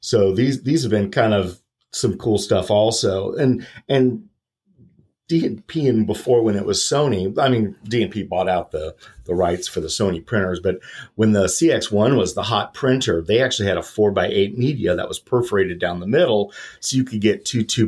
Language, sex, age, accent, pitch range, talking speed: English, male, 40-59, American, 95-120 Hz, 200 wpm